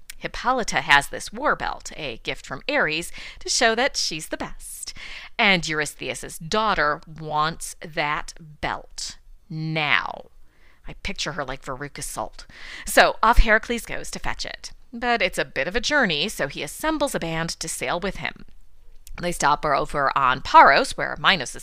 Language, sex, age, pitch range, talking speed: English, female, 40-59, 145-220 Hz, 160 wpm